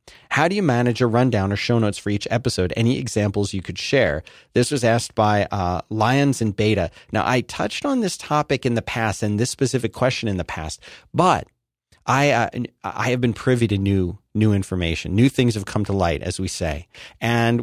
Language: English